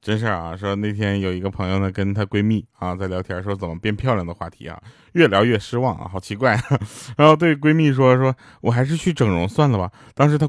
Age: 20-39